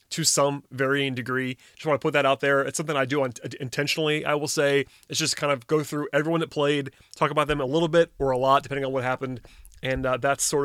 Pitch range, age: 135-150 Hz, 30-49